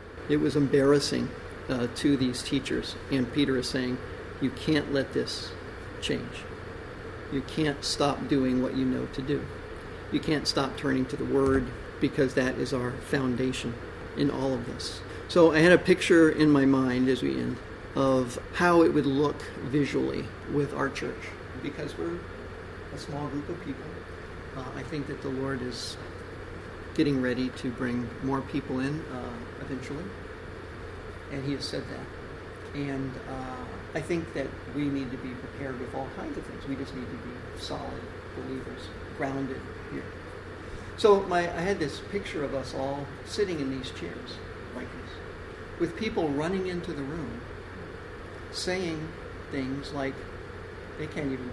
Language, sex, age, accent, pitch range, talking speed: English, male, 50-69, American, 100-140 Hz, 160 wpm